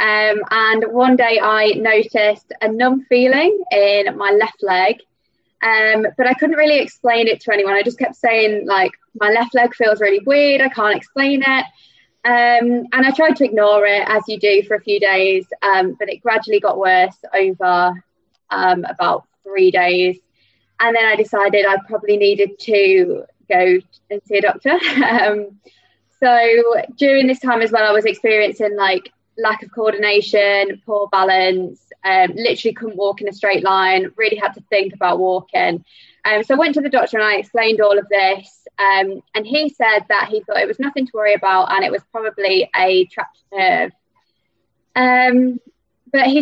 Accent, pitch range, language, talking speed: British, 195-240 Hz, English, 180 wpm